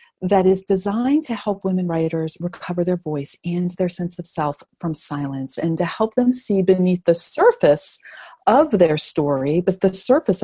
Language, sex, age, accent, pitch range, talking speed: English, female, 40-59, American, 155-195 Hz, 180 wpm